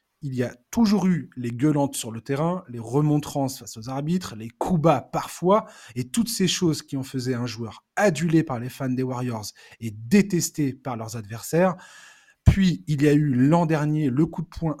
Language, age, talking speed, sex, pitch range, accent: French, 20-39, 205 wpm, male, 130-175 Hz, French